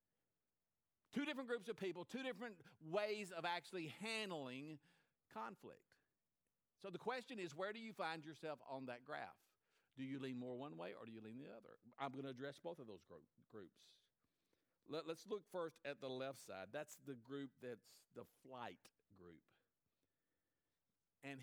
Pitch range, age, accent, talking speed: 120-170 Hz, 50-69, American, 165 wpm